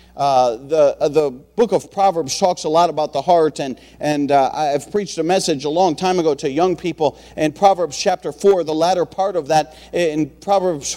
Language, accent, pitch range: English, American, 185-250 Hz